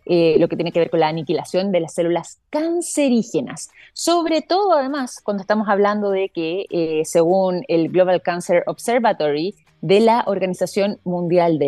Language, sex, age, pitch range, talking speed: Spanish, female, 20-39, 170-215 Hz, 165 wpm